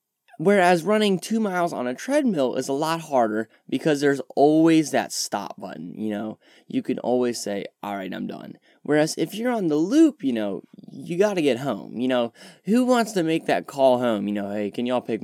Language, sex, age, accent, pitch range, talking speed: English, male, 10-29, American, 120-175 Hz, 215 wpm